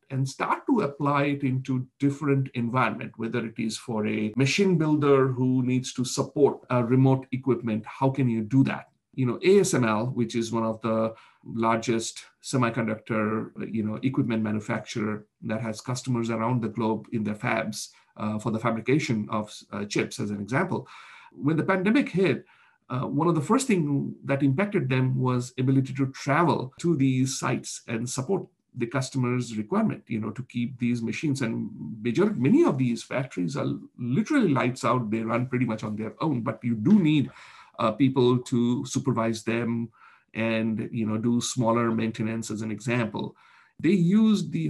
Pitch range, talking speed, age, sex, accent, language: 115-135 Hz, 170 wpm, 50-69, male, Indian, English